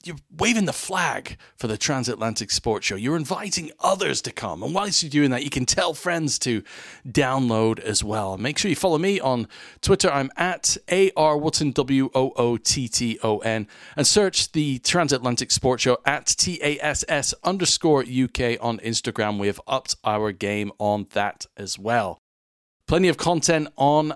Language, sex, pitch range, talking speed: English, male, 105-145 Hz, 155 wpm